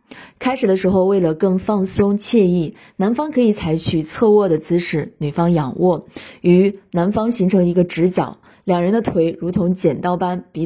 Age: 20-39